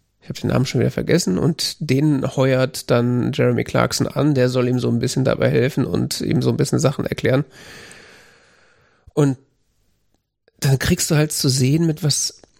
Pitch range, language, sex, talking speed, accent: 130-155 Hz, German, male, 170 wpm, German